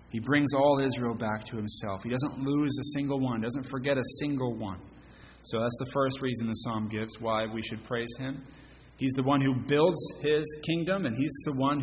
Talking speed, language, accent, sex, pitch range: 215 wpm, English, American, male, 105-125 Hz